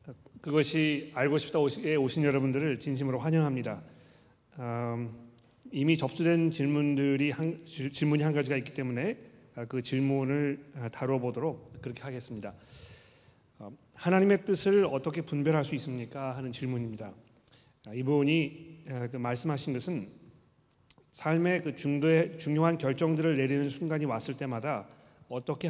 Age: 40-59